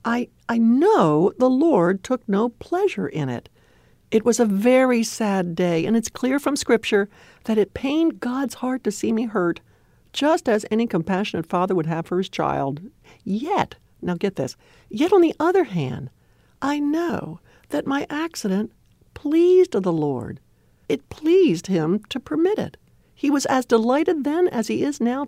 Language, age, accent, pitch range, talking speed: English, 60-79, American, 175-255 Hz, 170 wpm